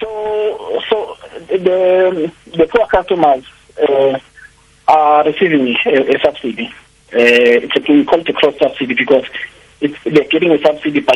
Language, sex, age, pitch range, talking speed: English, male, 50-69, 130-165 Hz, 150 wpm